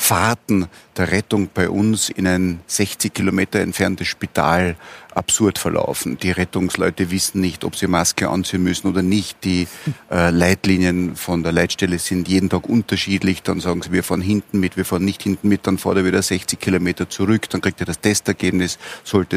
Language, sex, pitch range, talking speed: German, male, 90-100 Hz, 180 wpm